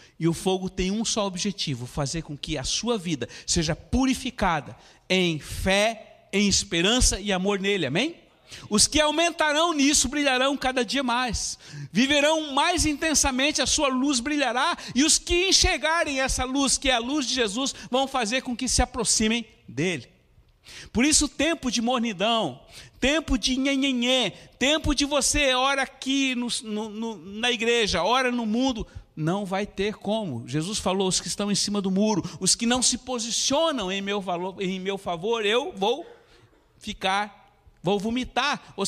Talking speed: 165 wpm